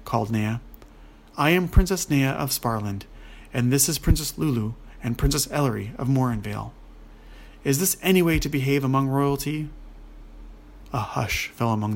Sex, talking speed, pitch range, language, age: male, 150 wpm, 110-140 Hz, English, 30-49